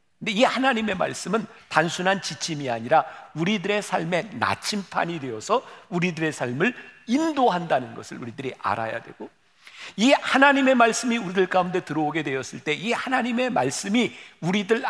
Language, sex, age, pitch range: Korean, male, 50-69, 165-235 Hz